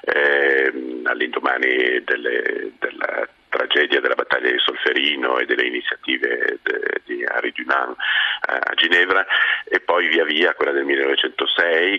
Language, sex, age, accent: Italian, male, 40-59, native